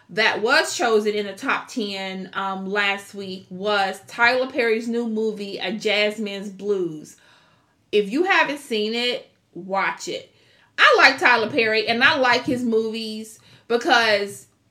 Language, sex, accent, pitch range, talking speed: English, female, American, 200-245 Hz, 145 wpm